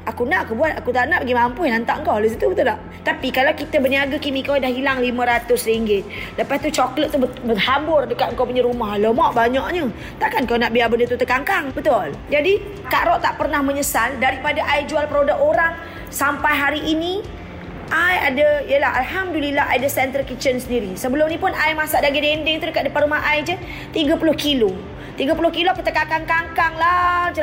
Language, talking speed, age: Malay, 180 wpm, 20-39